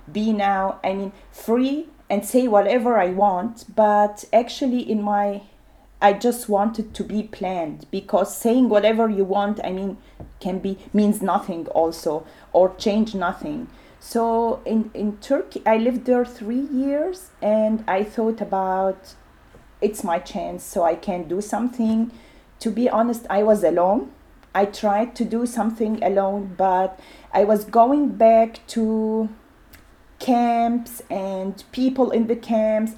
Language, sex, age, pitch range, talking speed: German, female, 30-49, 200-235 Hz, 145 wpm